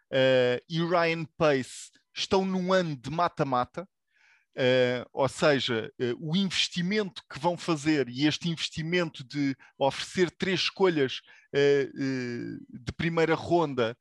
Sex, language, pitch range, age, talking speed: male, English, 130-170 Hz, 20-39, 130 wpm